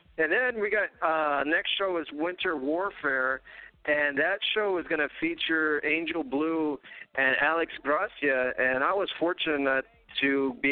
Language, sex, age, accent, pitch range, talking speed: English, male, 40-59, American, 130-150 Hz, 155 wpm